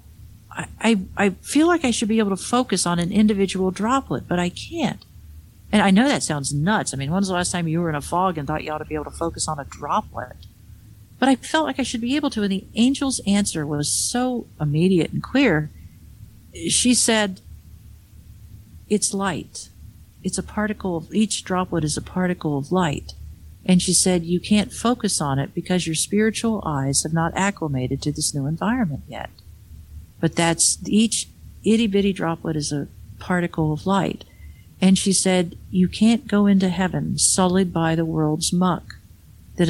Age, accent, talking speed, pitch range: 50-69, American, 185 wpm, 145-195 Hz